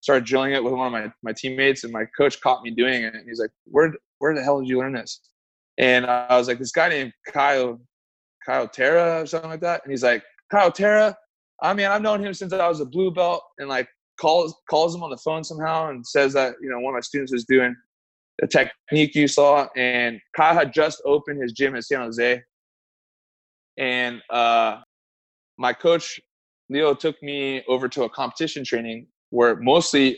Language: English